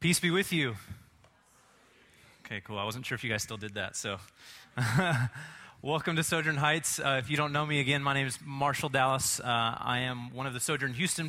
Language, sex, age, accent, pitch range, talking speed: English, male, 20-39, American, 115-150 Hz, 215 wpm